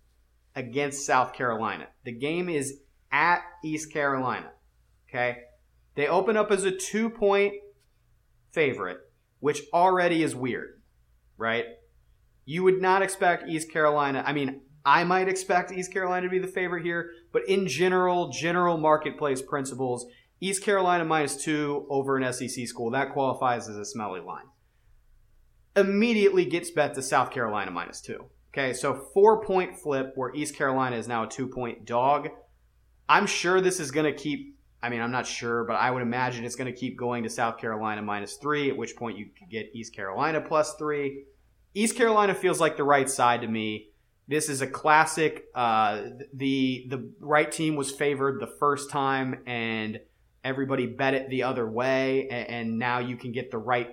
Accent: American